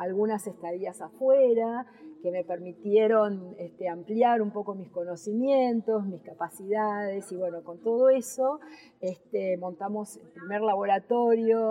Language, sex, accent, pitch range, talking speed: Spanish, female, Argentinian, 170-215 Hz, 115 wpm